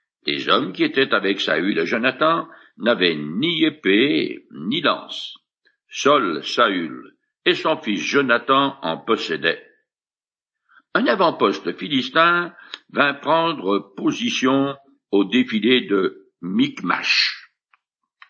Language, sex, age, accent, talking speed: French, male, 60-79, French, 100 wpm